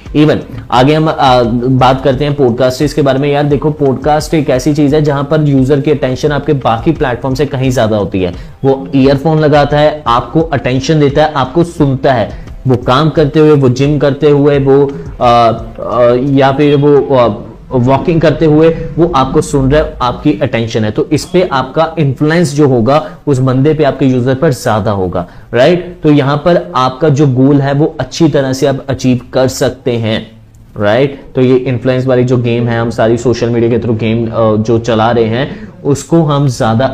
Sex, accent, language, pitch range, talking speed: male, native, Hindi, 120-150 Hz, 195 wpm